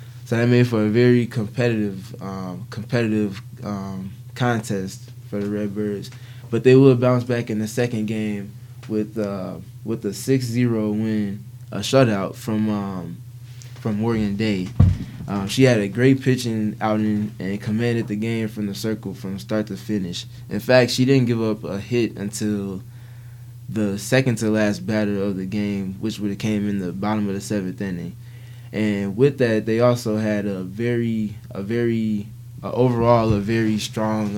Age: 20-39